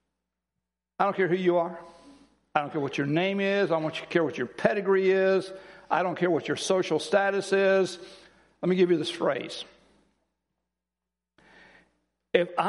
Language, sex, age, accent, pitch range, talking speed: English, male, 60-79, American, 155-205 Hz, 165 wpm